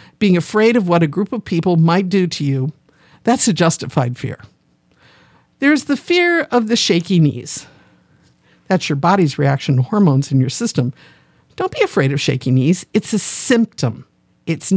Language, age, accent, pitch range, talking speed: English, 50-69, American, 150-225 Hz, 170 wpm